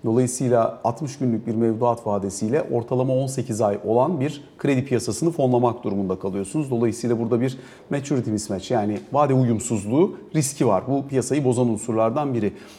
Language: Turkish